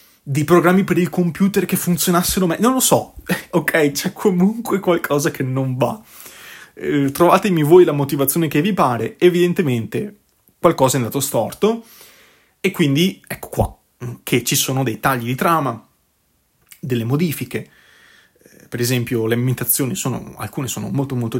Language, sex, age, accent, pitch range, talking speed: Italian, male, 30-49, native, 120-180 Hz, 150 wpm